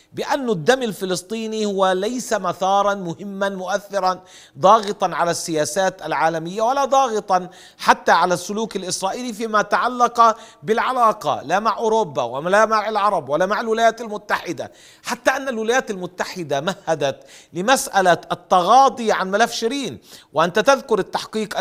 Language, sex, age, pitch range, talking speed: Arabic, male, 40-59, 175-225 Hz, 120 wpm